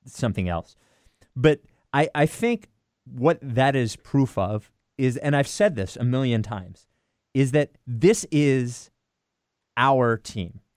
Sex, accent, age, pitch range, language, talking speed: male, American, 30-49, 110-145 Hz, English, 140 wpm